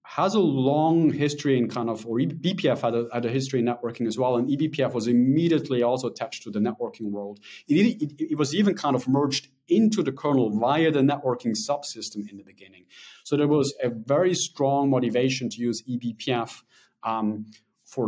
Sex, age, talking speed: male, 30-49, 195 wpm